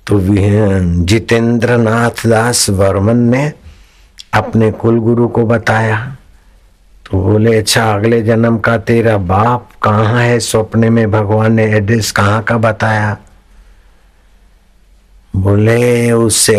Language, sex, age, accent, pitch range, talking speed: Hindi, male, 60-79, native, 100-115 Hz, 115 wpm